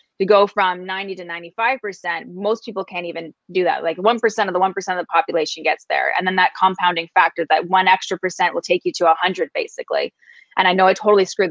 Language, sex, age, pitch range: English, female, 20-39, 175-215 Hz